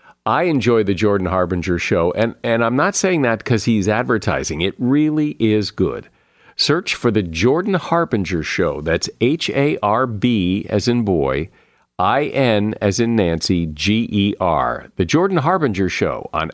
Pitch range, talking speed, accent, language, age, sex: 95-130 Hz, 145 wpm, American, English, 50-69, male